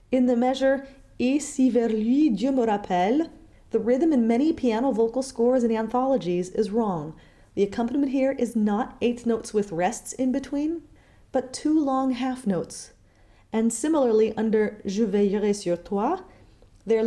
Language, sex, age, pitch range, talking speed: English, female, 30-49, 210-265 Hz, 160 wpm